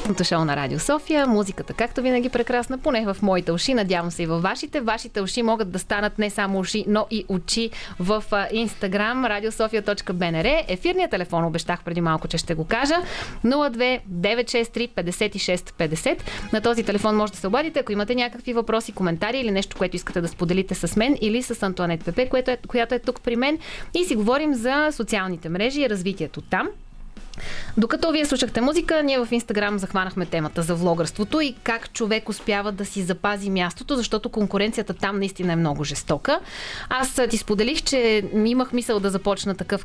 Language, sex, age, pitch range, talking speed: Bulgarian, female, 30-49, 190-250 Hz, 175 wpm